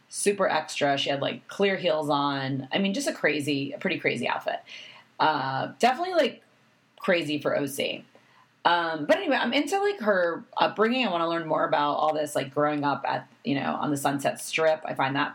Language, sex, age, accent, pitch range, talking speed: English, female, 30-49, American, 155-215 Hz, 205 wpm